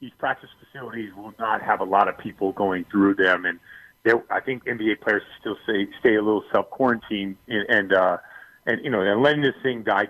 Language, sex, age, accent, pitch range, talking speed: English, male, 40-59, American, 105-140 Hz, 210 wpm